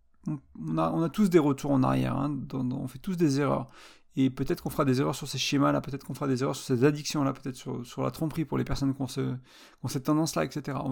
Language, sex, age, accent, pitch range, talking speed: French, male, 30-49, French, 130-165 Hz, 265 wpm